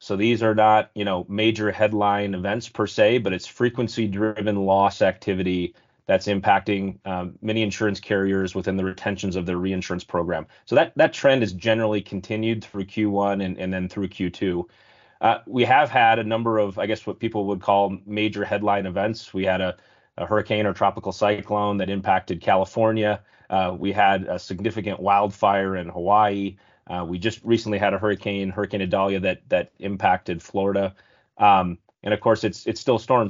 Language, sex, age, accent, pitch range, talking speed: English, male, 30-49, American, 95-110 Hz, 175 wpm